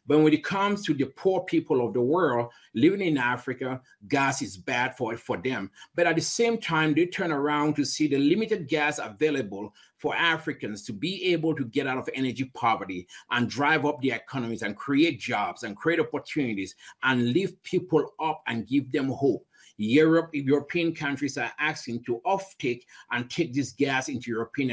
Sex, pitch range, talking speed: male, 120-150 Hz, 185 wpm